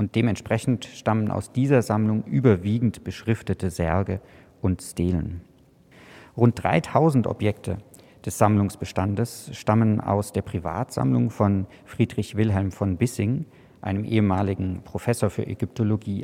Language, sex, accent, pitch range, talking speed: German, male, German, 95-120 Hz, 110 wpm